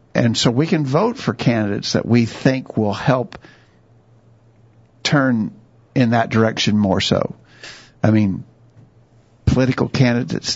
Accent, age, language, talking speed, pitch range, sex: American, 50-69, English, 125 wpm, 110-125 Hz, male